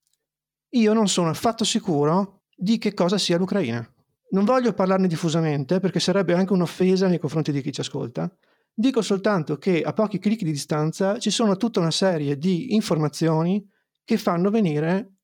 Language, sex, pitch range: Italian, male, 160-215 Hz